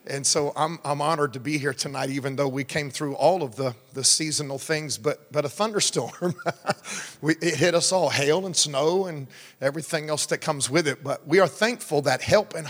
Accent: American